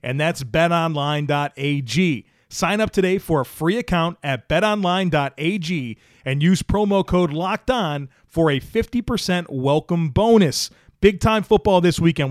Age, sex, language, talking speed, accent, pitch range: 30-49, male, English, 130 wpm, American, 130-190 Hz